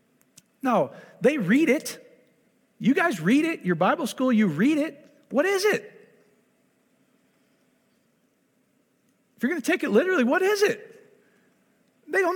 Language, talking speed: English, 140 wpm